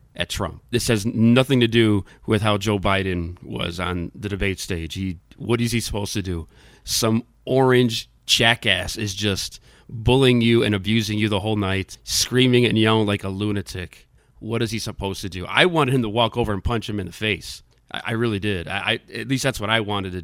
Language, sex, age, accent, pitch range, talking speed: English, male, 30-49, American, 100-130 Hz, 215 wpm